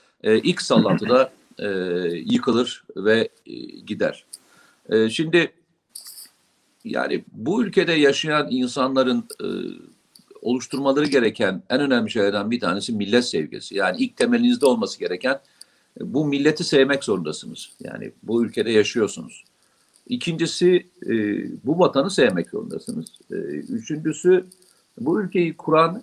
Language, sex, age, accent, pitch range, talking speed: Turkish, male, 50-69, native, 125-185 Hz, 115 wpm